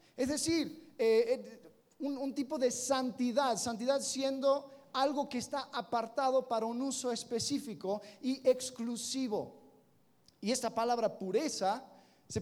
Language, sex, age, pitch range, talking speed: Spanish, male, 40-59, 175-240 Hz, 125 wpm